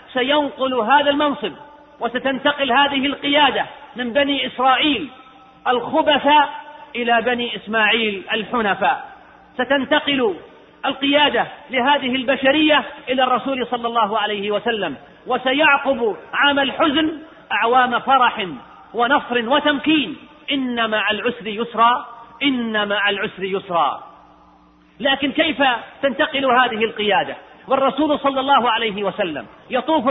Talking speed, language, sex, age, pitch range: 100 wpm, Arabic, male, 40-59, 240-285 Hz